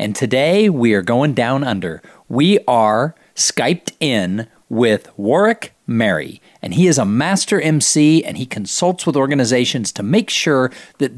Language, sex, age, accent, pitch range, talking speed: English, male, 50-69, American, 120-165 Hz, 155 wpm